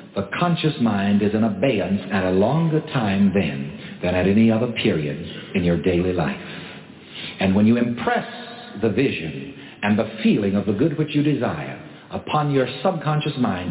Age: 60-79